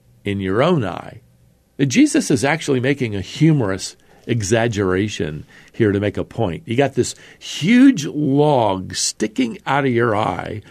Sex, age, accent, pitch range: male, 50-69, American, 105-145 Hz